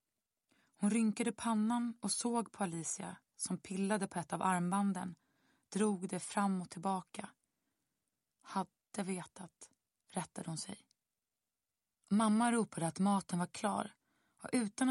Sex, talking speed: female, 125 wpm